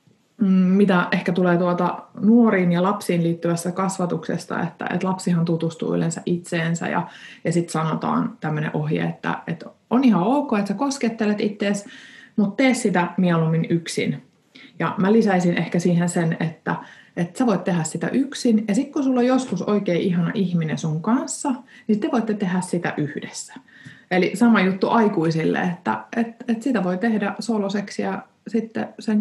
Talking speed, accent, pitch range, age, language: 160 wpm, native, 165-220 Hz, 30-49, Finnish